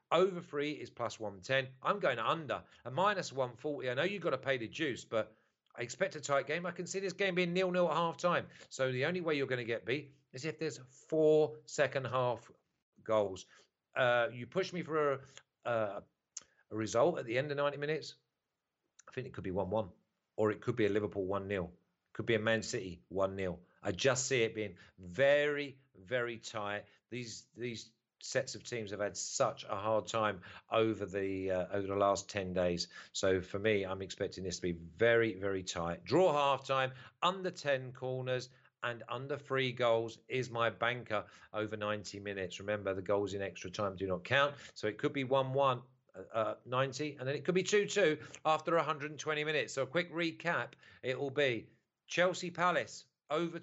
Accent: British